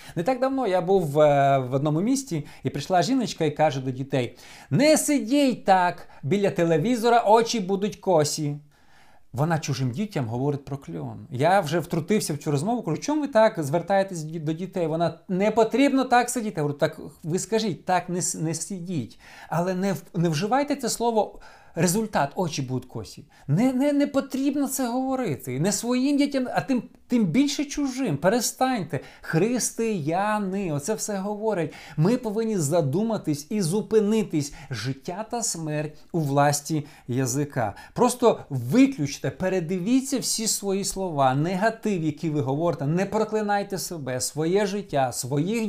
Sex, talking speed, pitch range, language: male, 150 wpm, 150-225 Hz, Ukrainian